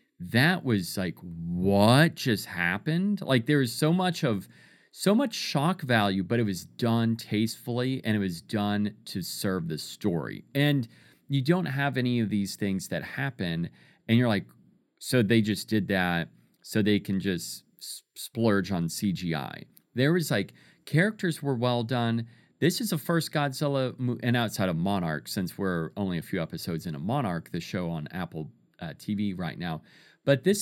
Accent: American